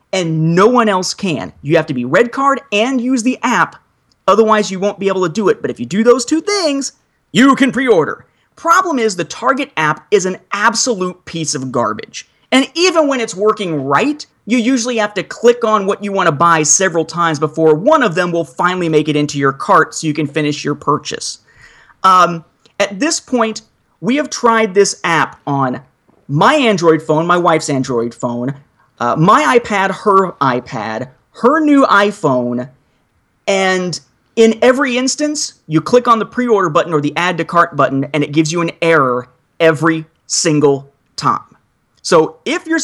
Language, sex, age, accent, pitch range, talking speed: English, male, 30-49, American, 155-230 Hz, 185 wpm